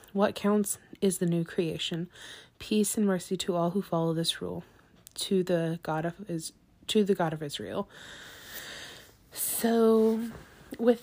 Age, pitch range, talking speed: 20-39, 165-195 Hz, 145 wpm